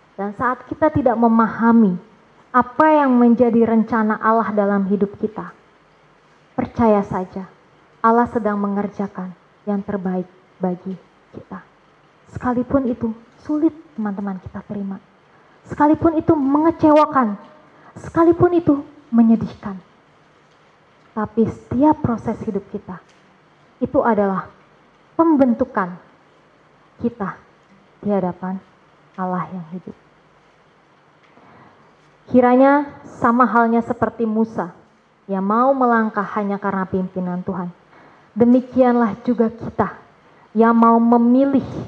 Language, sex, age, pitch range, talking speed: Indonesian, female, 20-39, 190-245 Hz, 95 wpm